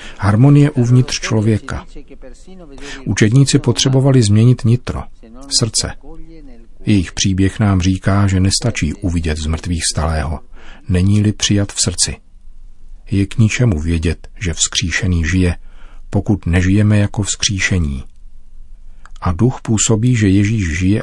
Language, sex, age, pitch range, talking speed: Czech, male, 40-59, 90-105 Hz, 110 wpm